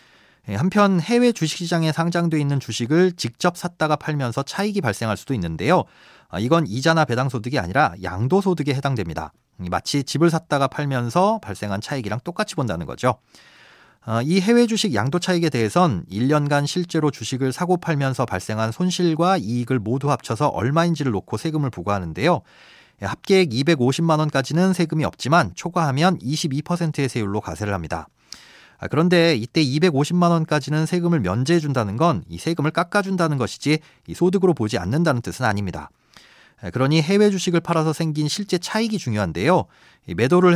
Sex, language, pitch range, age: male, Korean, 120-170 Hz, 30-49